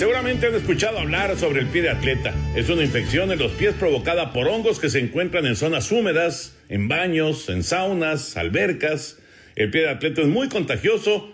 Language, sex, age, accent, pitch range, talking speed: Spanish, male, 50-69, Mexican, 120-175 Hz, 190 wpm